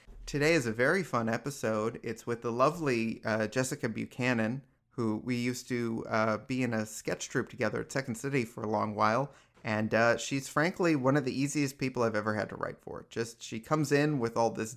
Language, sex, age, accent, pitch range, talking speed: English, male, 30-49, American, 110-130 Hz, 215 wpm